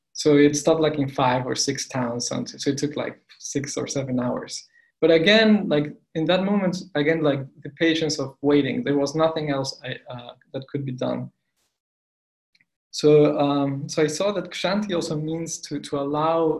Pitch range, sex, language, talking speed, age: 130-155 Hz, male, English, 190 wpm, 20-39